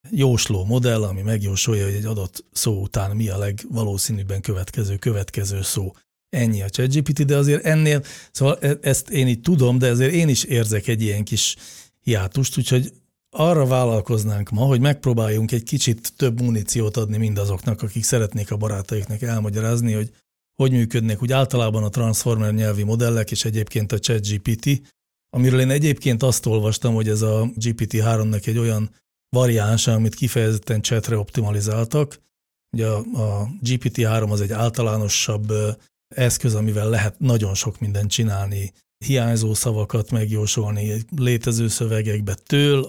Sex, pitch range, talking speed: male, 105-125 Hz, 140 wpm